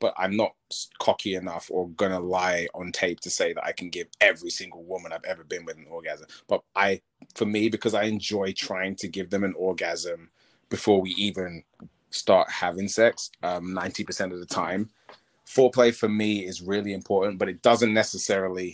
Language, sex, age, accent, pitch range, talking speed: English, male, 30-49, British, 90-120 Hz, 190 wpm